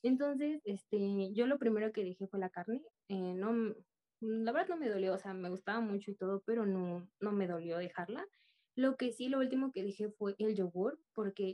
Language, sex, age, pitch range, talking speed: English, female, 20-39, 190-245 Hz, 215 wpm